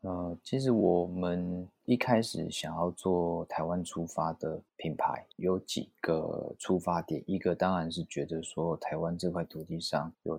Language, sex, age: Chinese, male, 20-39